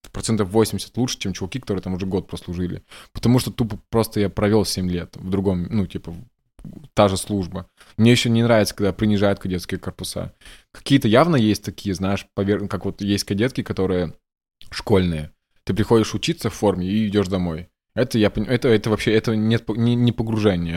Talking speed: 180 wpm